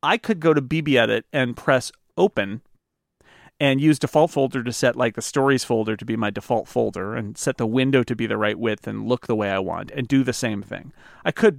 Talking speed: 240 wpm